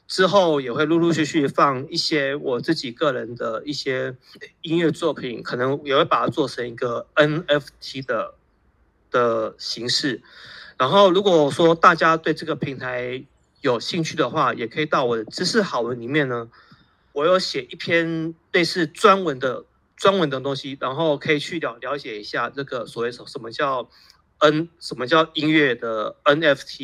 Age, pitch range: 30-49, 140-185 Hz